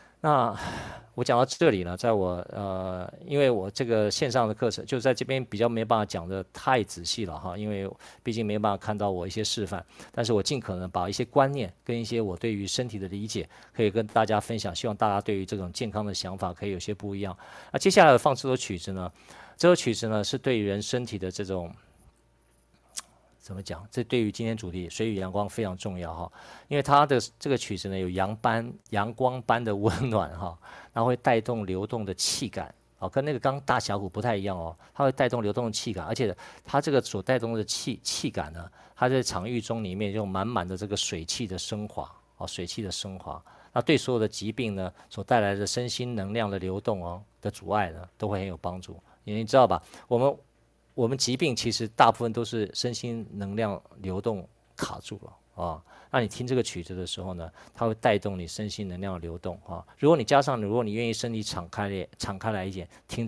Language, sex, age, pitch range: Chinese, male, 50-69, 95-120 Hz